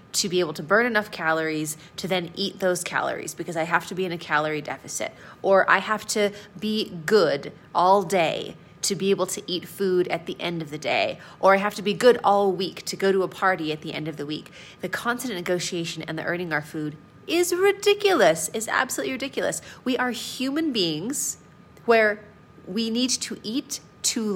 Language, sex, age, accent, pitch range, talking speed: English, female, 30-49, American, 165-215 Hz, 205 wpm